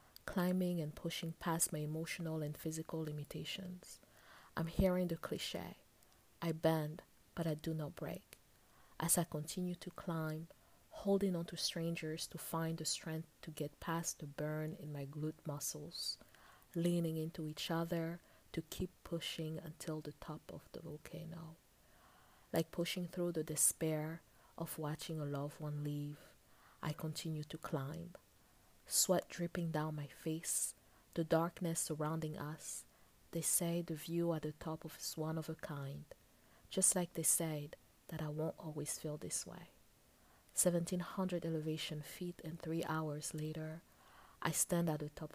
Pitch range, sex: 155-170 Hz, female